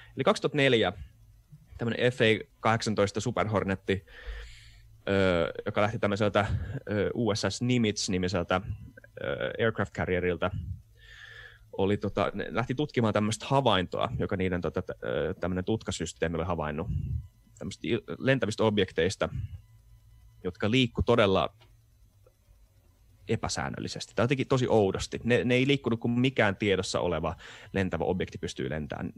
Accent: native